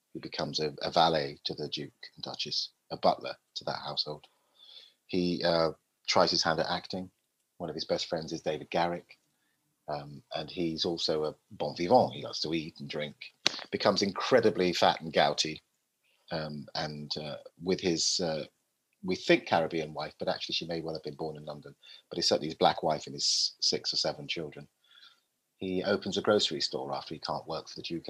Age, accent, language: 30-49, British, English